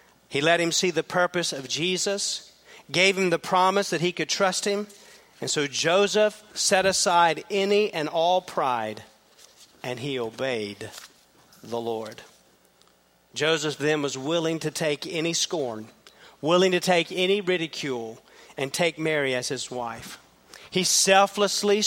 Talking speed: 145 wpm